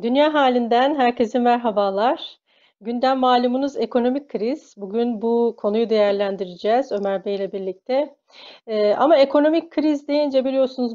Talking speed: 115 wpm